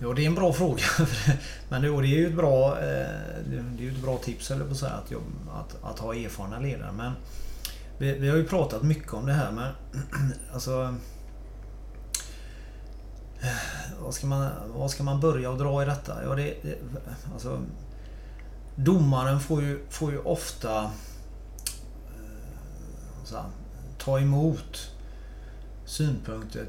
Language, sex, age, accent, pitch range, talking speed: Swedish, male, 30-49, native, 105-140 Hz, 135 wpm